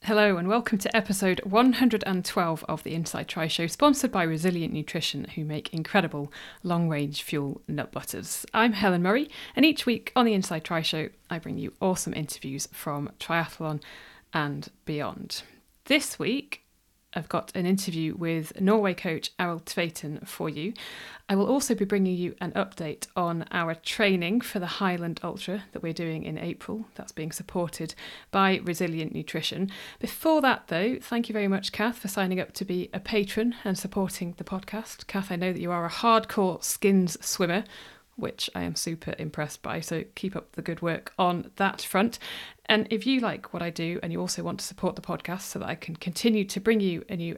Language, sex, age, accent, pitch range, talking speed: English, female, 40-59, British, 165-205 Hz, 190 wpm